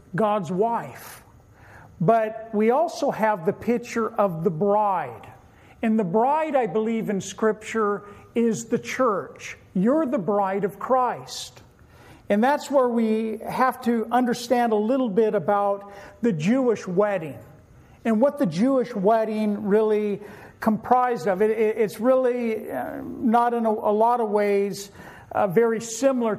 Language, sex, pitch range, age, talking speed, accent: English, male, 200-235 Hz, 50-69, 135 wpm, American